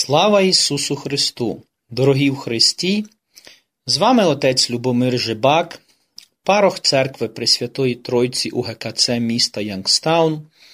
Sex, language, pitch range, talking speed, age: male, Ukrainian, 115-165 Hz, 105 wpm, 30-49